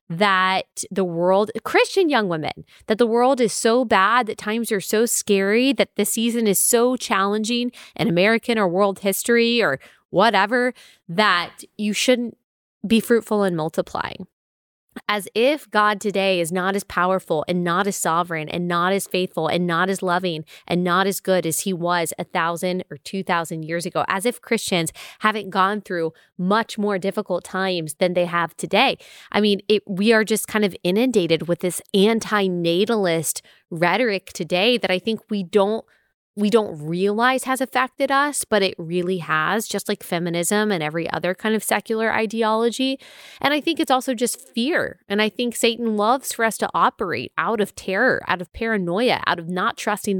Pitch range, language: 180-230 Hz, English